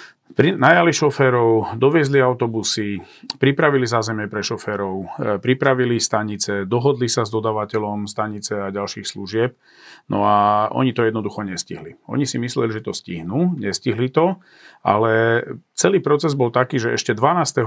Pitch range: 110-130 Hz